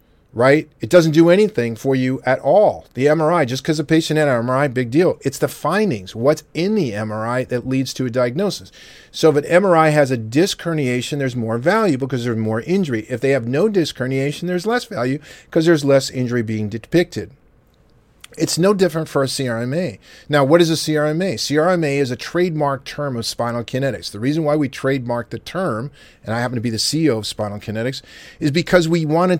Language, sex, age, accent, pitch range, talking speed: English, male, 40-59, American, 120-155 Hz, 210 wpm